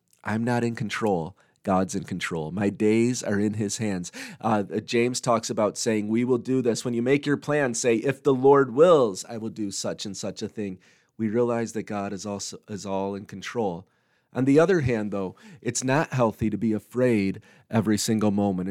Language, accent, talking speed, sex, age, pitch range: English, American, 205 wpm, male, 30-49, 105-125 Hz